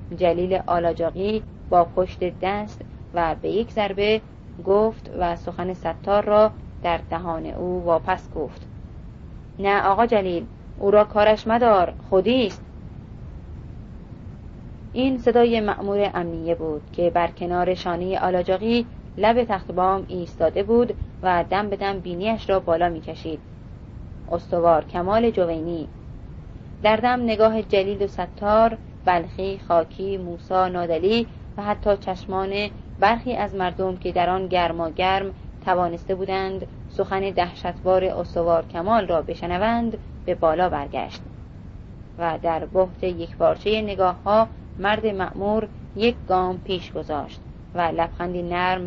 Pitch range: 170-210 Hz